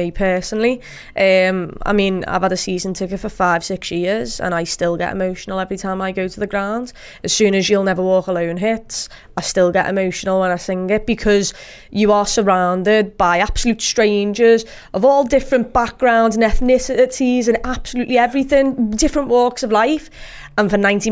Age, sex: 20-39, female